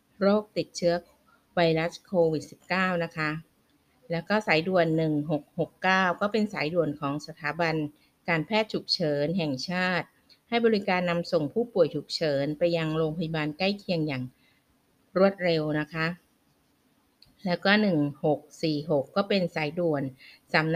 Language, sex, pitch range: Thai, female, 155-185 Hz